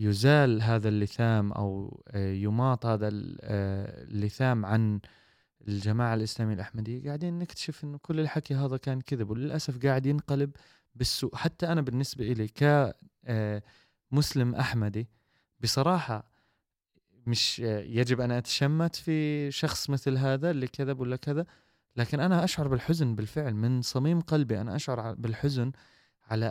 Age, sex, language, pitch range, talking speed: 20-39, male, Arabic, 115-160 Hz, 120 wpm